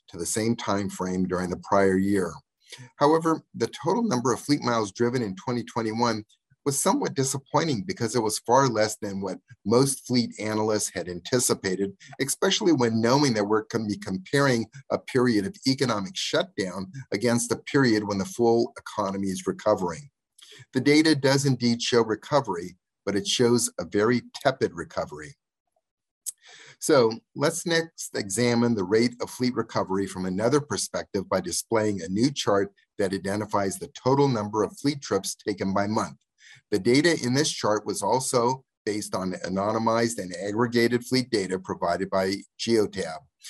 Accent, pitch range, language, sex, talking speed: American, 100-135 Hz, English, male, 155 wpm